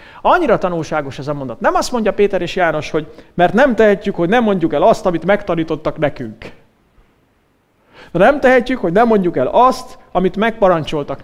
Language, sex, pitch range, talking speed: English, male, 165-240 Hz, 170 wpm